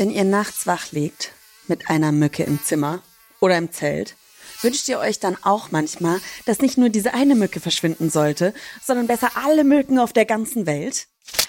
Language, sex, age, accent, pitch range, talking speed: German, female, 30-49, German, 170-245 Hz, 185 wpm